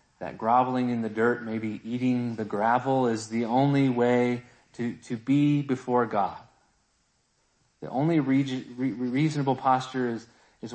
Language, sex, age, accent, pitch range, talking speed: English, male, 30-49, American, 110-135 Hz, 140 wpm